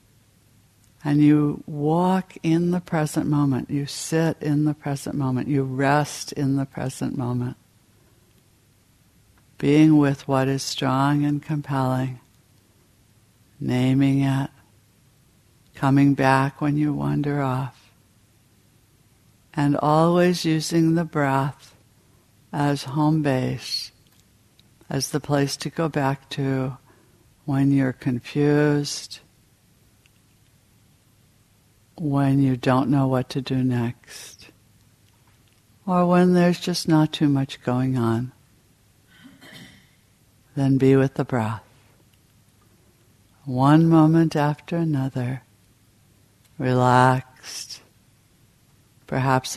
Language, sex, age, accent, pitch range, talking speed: English, female, 60-79, American, 115-145 Hz, 95 wpm